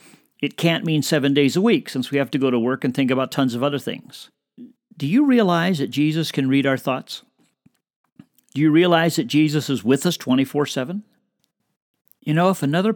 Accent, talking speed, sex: American, 200 wpm, male